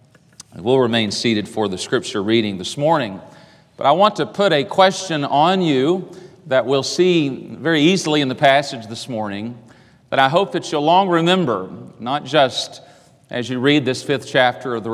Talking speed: 180 wpm